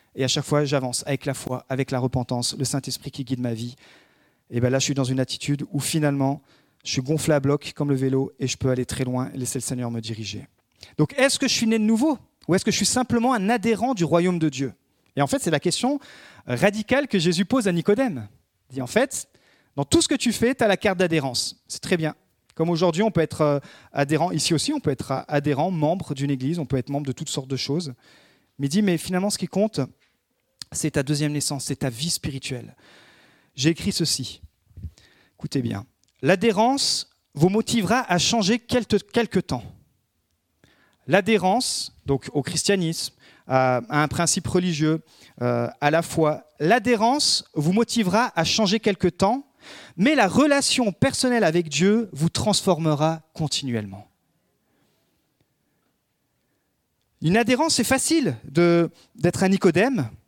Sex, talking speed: male, 180 wpm